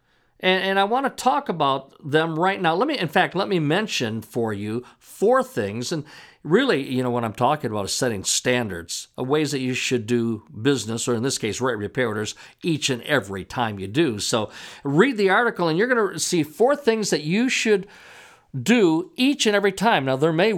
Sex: male